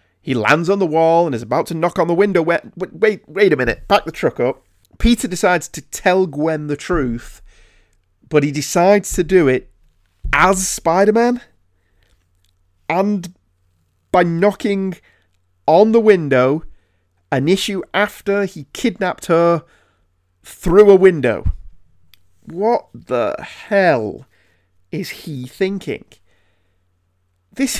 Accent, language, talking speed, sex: British, English, 125 wpm, male